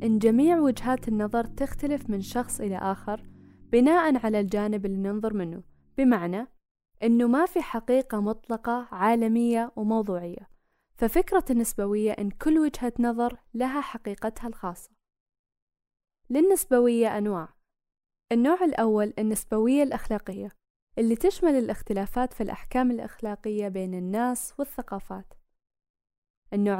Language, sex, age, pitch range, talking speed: Arabic, female, 10-29, 210-260 Hz, 105 wpm